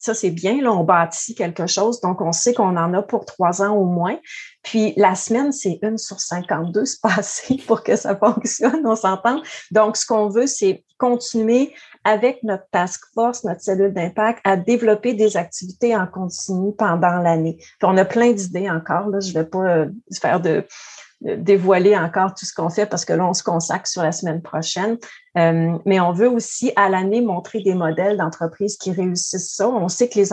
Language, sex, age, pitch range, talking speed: French, female, 30-49, 175-215 Hz, 200 wpm